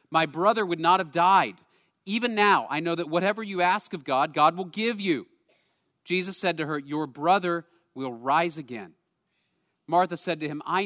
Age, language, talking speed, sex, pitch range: 40-59, English, 190 wpm, male, 140-180 Hz